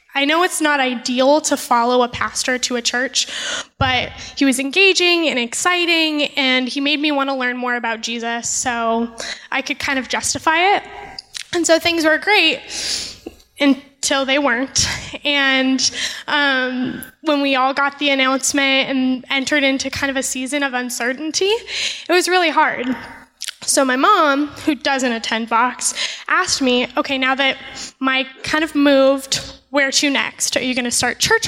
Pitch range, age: 255-295 Hz, 10-29